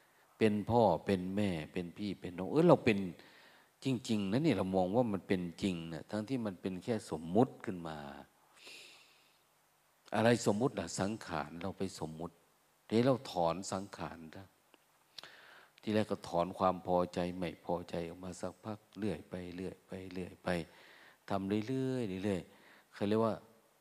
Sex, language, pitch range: male, Thai, 90-115 Hz